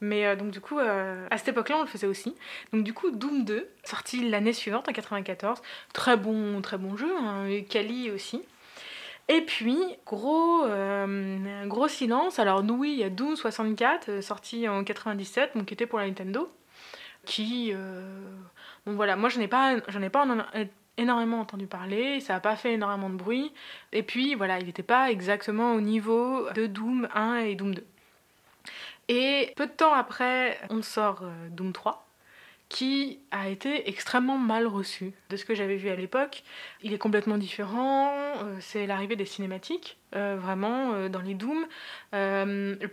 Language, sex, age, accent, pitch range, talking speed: French, female, 20-39, French, 200-250 Hz, 180 wpm